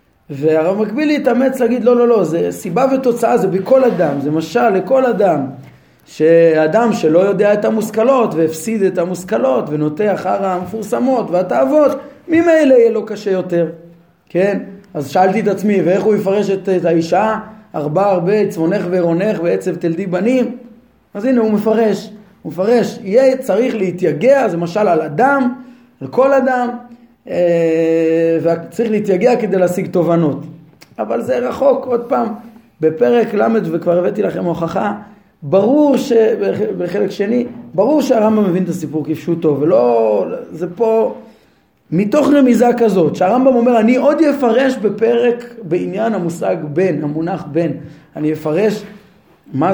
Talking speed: 140 wpm